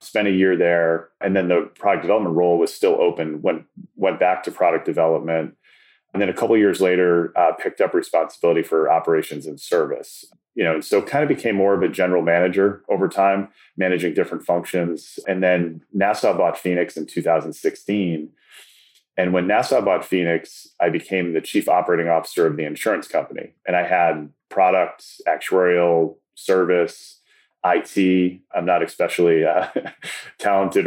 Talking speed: 165 wpm